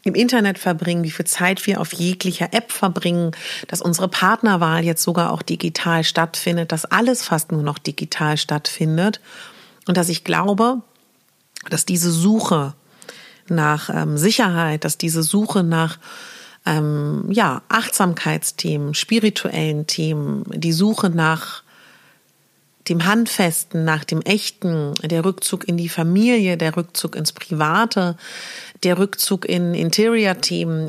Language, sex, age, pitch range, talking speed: German, female, 40-59, 165-210 Hz, 125 wpm